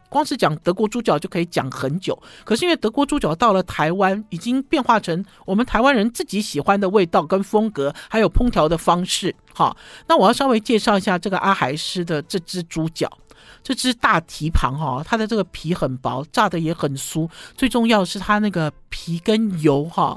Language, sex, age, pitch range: Chinese, male, 50-69, 160-245 Hz